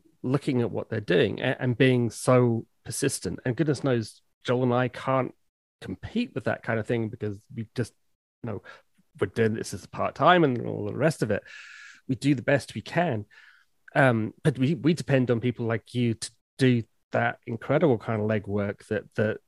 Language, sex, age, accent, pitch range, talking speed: English, male, 30-49, British, 110-135 Hz, 195 wpm